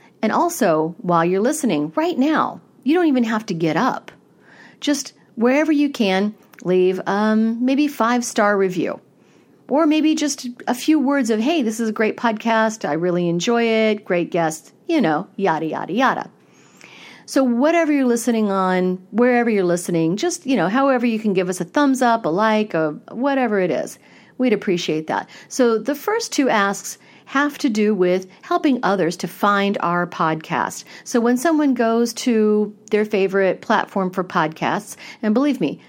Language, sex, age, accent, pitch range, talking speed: English, female, 50-69, American, 185-250 Hz, 175 wpm